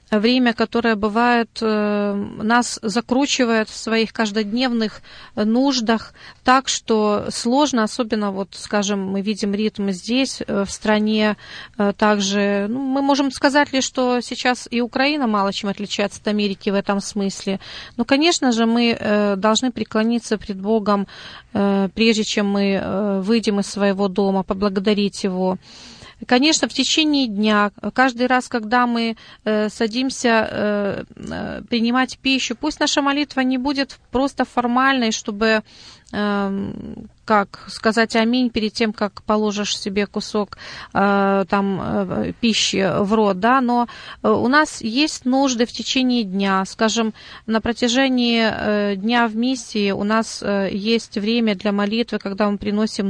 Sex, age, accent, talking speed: female, 30-49, native, 125 wpm